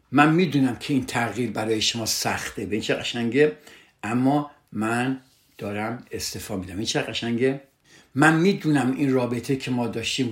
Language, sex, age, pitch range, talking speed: Persian, male, 60-79, 110-135 Hz, 150 wpm